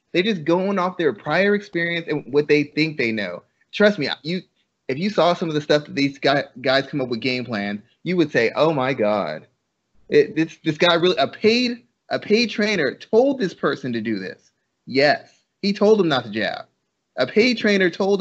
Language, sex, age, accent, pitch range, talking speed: English, male, 30-49, American, 130-170 Hz, 220 wpm